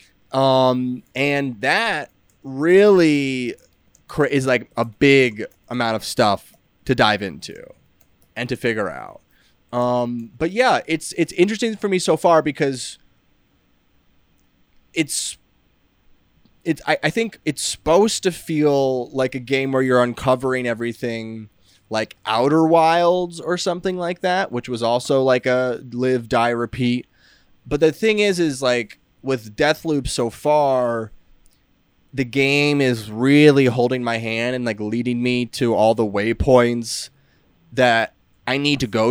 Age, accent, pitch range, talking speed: 20-39, American, 115-150 Hz, 140 wpm